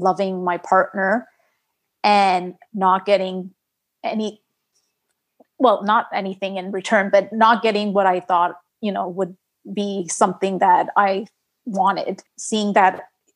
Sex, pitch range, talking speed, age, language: female, 190-220 Hz, 125 wpm, 30-49, English